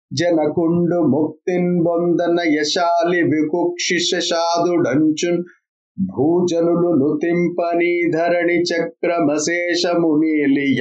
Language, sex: Telugu, male